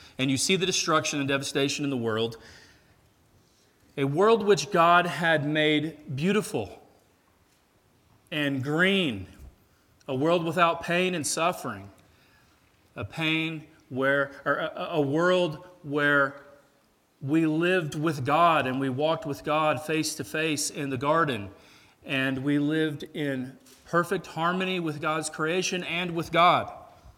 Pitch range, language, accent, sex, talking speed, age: 120-160 Hz, English, American, male, 130 wpm, 40-59